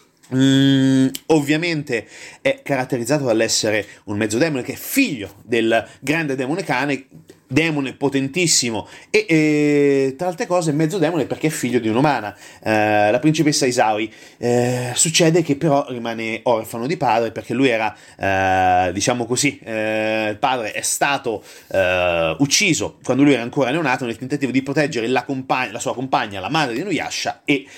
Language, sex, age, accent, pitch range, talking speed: Italian, male, 30-49, native, 115-155 Hz, 155 wpm